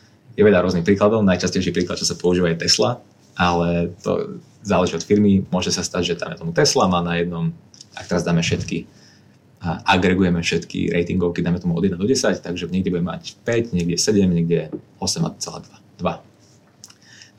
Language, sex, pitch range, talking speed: Czech, male, 85-105 Hz, 175 wpm